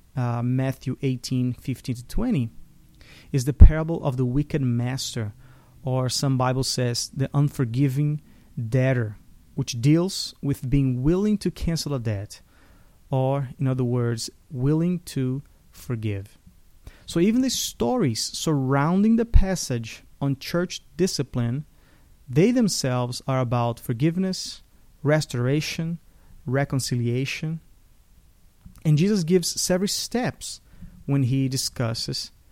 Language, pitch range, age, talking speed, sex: English, 120-150 Hz, 30-49, 115 wpm, male